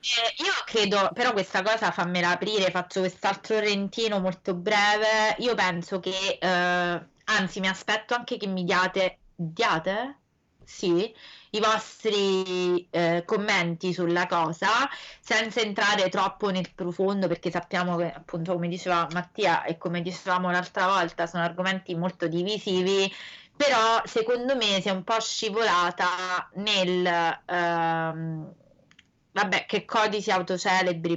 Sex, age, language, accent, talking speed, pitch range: female, 20-39, Italian, native, 130 wpm, 175-215 Hz